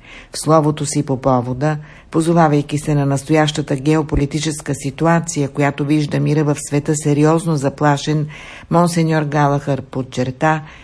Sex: female